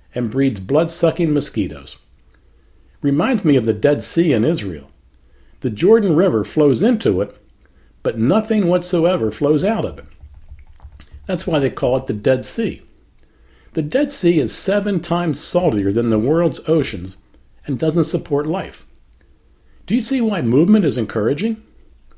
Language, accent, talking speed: English, American, 150 wpm